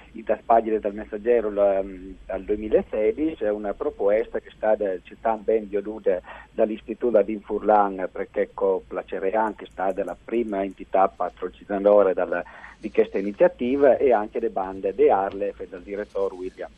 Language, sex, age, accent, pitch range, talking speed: Italian, male, 40-59, native, 105-125 Hz, 135 wpm